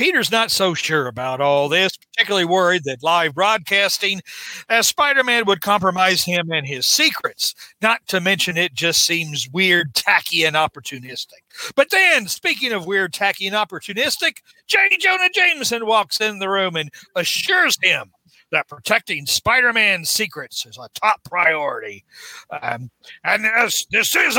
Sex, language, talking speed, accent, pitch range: male, English, 155 wpm, American, 160-225 Hz